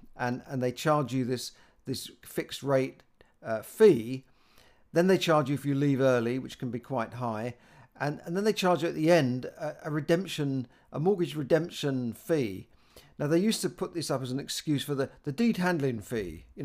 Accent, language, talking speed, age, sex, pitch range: British, English, 205 wpm, 50-69, male, 125-155 Hz